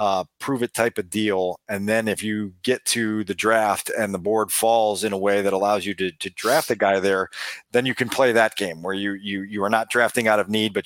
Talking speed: 255 wpm